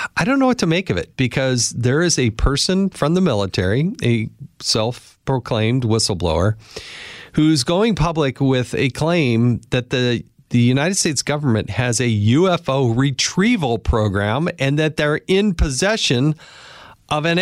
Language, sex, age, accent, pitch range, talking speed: English, male, 40-59, American, 115-165 Hz, 150 wpm